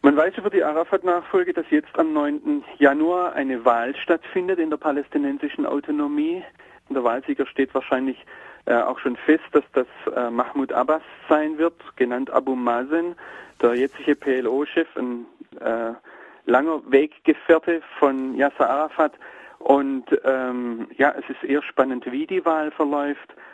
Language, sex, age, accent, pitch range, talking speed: German, male, 40-59, German, 130-175 Hz, 145 wpm